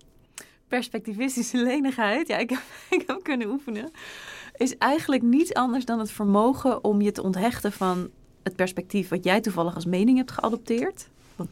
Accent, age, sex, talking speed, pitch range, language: Dutch, 30-49, female, 155 wpm, 180-240 Hz, Dutch